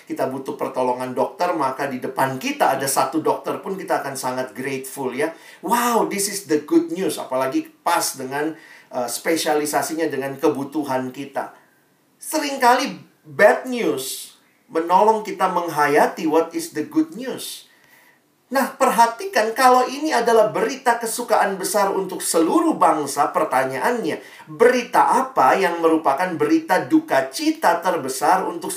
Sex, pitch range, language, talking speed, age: male, 135-190 Hz, Indonesian, 130 wpm, 40-59